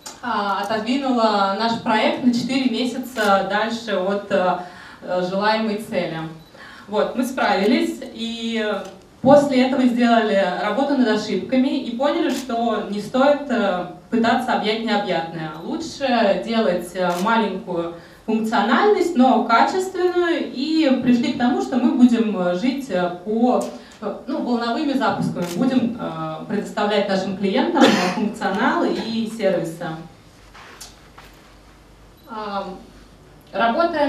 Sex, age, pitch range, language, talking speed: female, 20-39, 200-260 Hz, Russian, 95 wpm